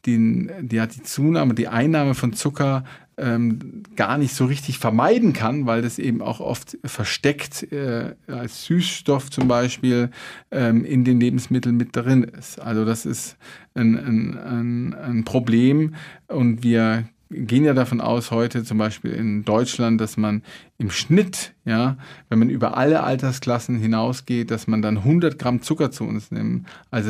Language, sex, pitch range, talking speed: German, male, 110-130 Hz, 160 wpm